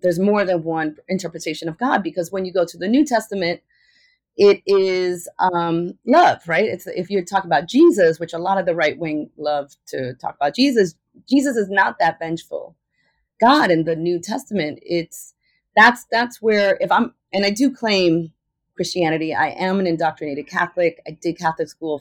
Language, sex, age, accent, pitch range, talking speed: English, female, 30-49, American, 165-220 Hz, 185 wpm